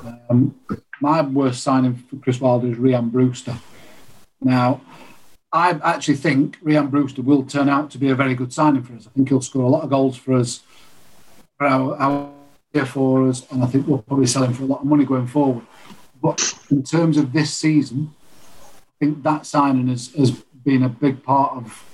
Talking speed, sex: 200 wpm, male